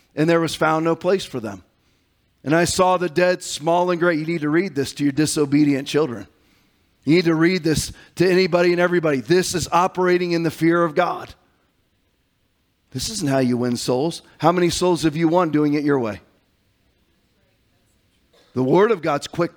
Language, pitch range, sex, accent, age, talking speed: English, 140-180 Hz, male, American, 40-59, 195 wpm